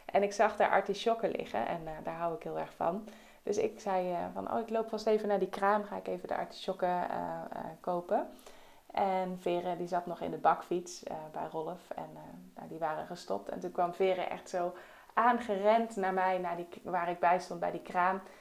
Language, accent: Dutch, Dutch